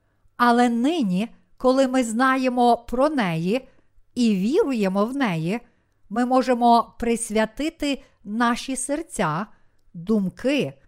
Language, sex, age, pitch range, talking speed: Ukrainian, female, 50-69, 175-255 Hz, 95 wpm